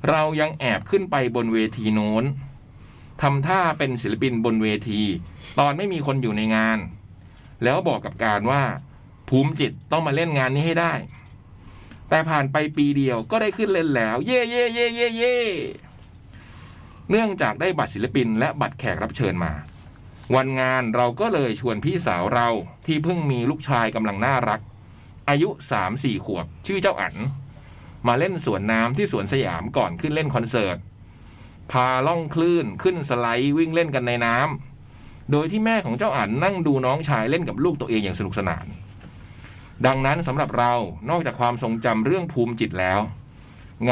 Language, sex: Thai, male